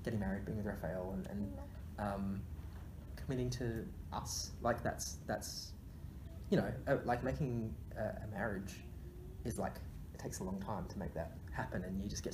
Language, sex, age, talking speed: English, male, 10-29, 180 wpm